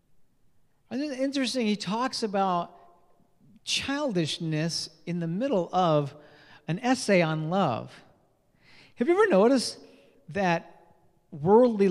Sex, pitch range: male, 165-225 Hz